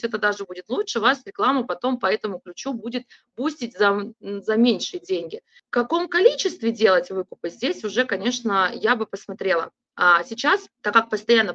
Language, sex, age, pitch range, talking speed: Russian, female, 20-39, 195-255 Hz, 160 wpm